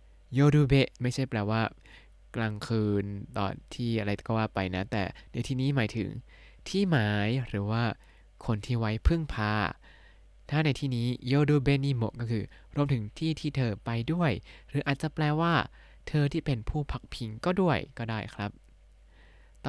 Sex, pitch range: male, 105-140 Hz